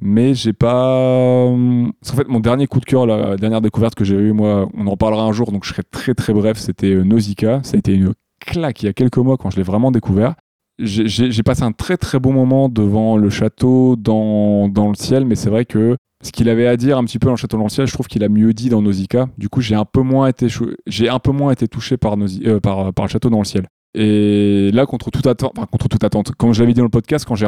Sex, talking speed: male, 260 wpm